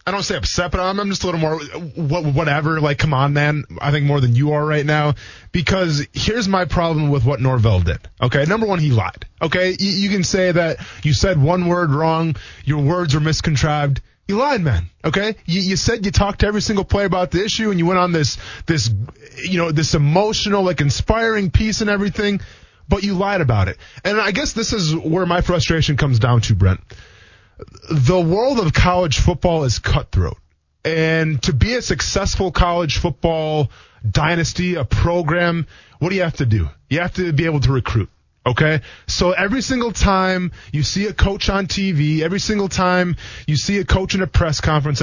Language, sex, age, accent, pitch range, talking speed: English, male, 20-39, American, 130-185 Hz, 200 wpm